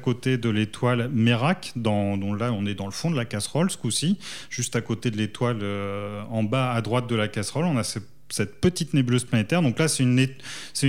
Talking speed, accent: 215 wpm, French